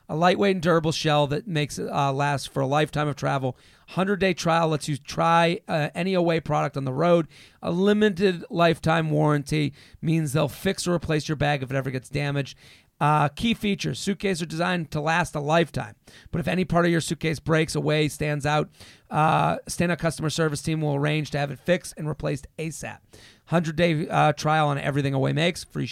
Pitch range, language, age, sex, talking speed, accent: 150-180 Hz, English, 40-59, male, 200 wpm, American